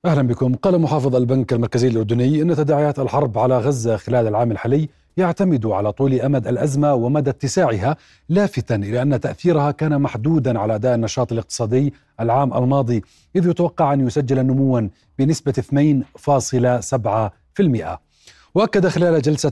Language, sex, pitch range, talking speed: Arabic, male, 120-155 Hz, 135 wpm